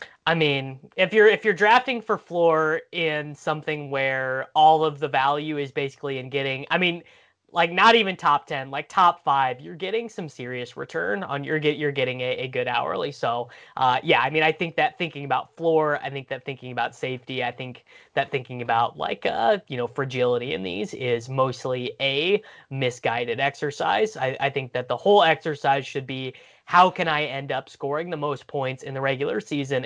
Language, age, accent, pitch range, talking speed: English, 20-39, American, 130-155 Hz, 200 wpm